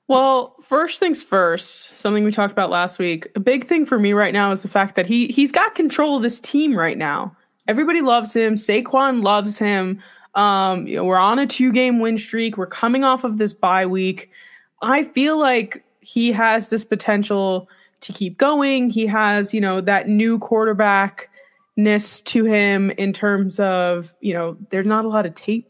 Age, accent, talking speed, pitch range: 20-39, American, 190 wpm, 195-250 Hz